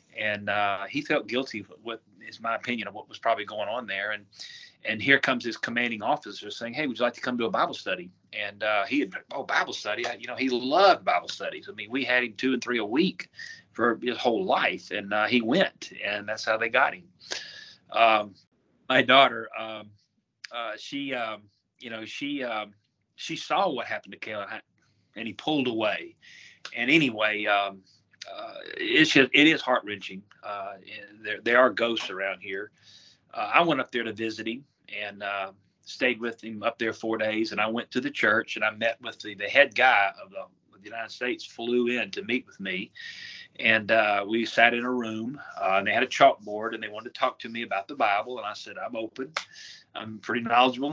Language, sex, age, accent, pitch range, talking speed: English, male, 30-49, American, 105-125 Hz, 215 wpm